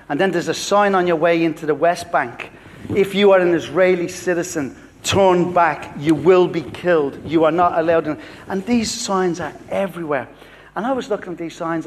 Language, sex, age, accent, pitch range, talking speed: English, male, 40-59, British, 145-180 Hz, 200 wpm